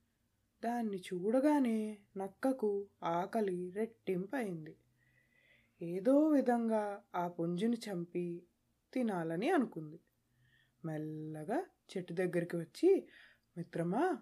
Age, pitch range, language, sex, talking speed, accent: 20-39, 180-255 Hz, Telugu, female, 75 wpm, native